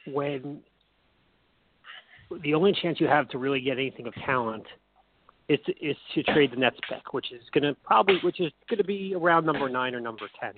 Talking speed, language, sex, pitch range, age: 200 wpm, English, male, 130-170 Hz, 40-59